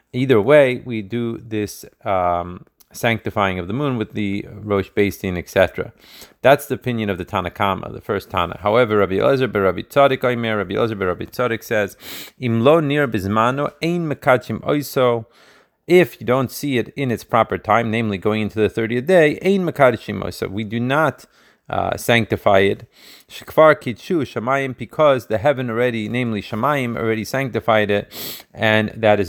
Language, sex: Hebrew, male